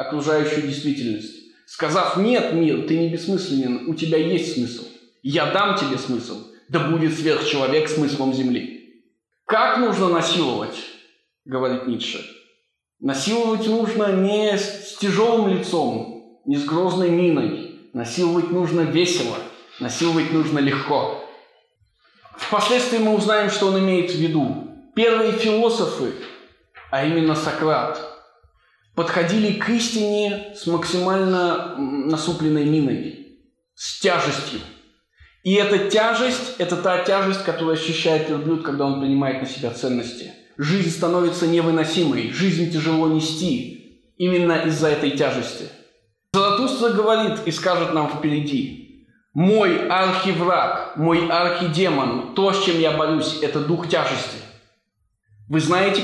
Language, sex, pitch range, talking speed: Russian, male, 150-200 Hz, 120 wpm